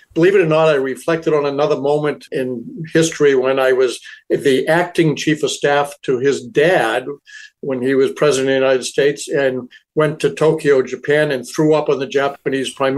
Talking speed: 195 wpm